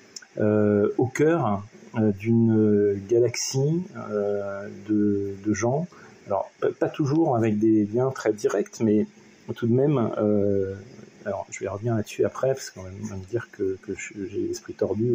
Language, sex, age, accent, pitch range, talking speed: French, male, 40-59, French, 100-120 Hz, 160 wpm